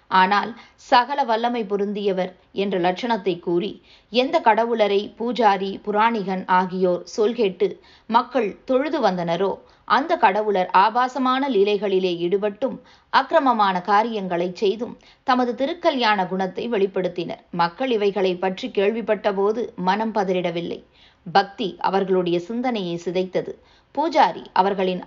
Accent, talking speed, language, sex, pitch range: native, 100 wpm, Tamil, female, 185-230 Hz